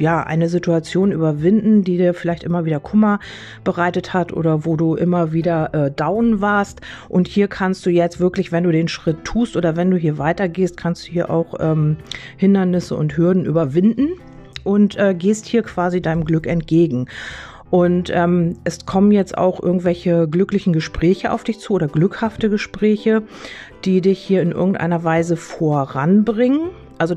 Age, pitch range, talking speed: 40-59, 165-190 Hz, 170 wpm